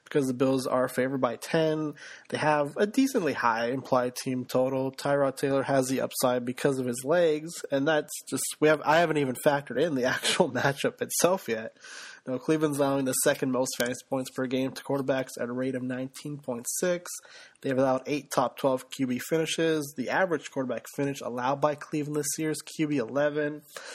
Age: 20-39